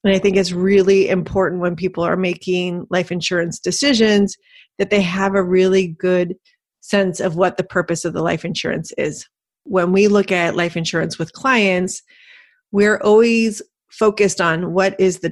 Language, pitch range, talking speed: English, 180-205 Hz, 170 wpm